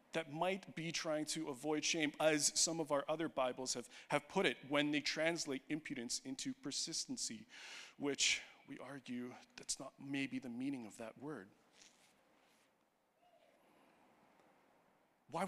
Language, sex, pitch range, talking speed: English, male, 165-220 Hz, 135 wpm